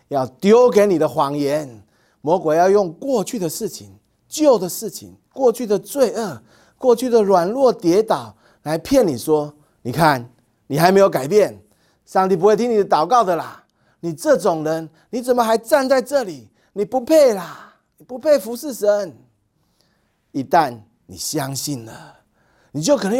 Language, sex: Chinese, male